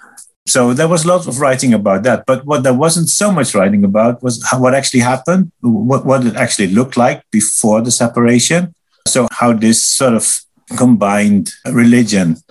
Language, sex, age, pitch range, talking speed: English, male, 50-69, 110-130 Hz, 175 wpm